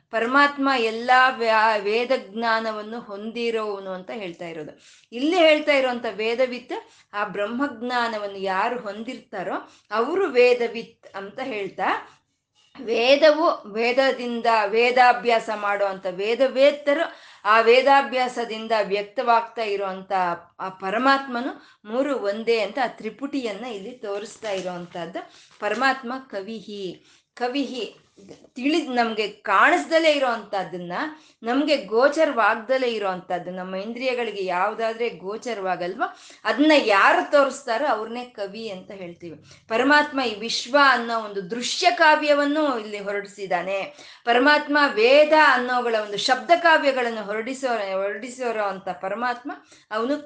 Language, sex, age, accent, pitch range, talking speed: Kannada, female, 20-39, native, 205-270 Hz, 95 wpm